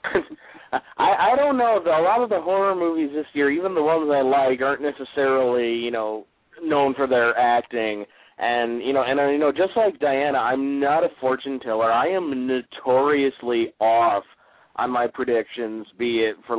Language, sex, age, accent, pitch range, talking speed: English, male, 30-49, American, 115-150 Hz, 180 wpm